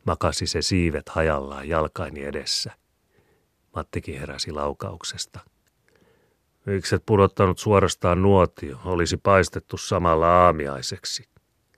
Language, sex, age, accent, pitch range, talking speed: Finnish, male, 40-59, native, 80-95 Hz, 85 wpm